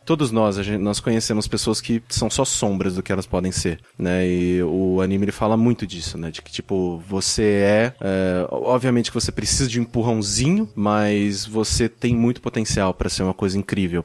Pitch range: 100-125 Hz